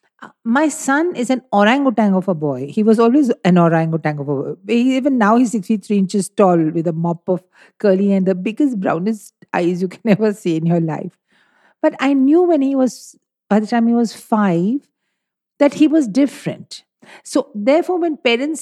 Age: 50-69